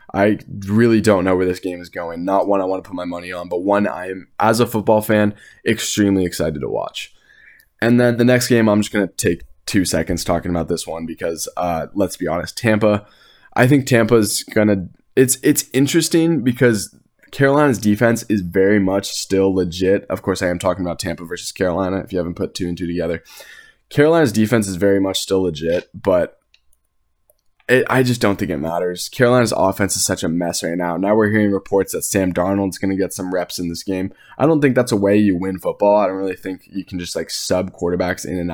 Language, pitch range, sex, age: English, 90-115 Hz, male, 20-39